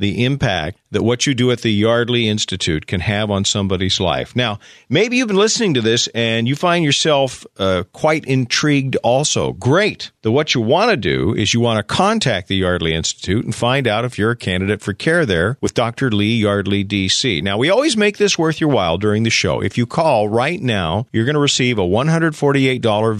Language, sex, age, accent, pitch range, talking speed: English, male, 50-69, American, 105-150 Hz, 210 wpm